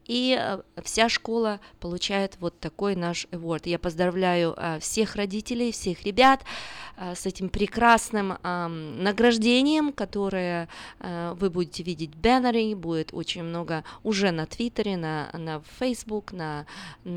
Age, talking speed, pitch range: 20-39, 120 wpm, 170-215 Hz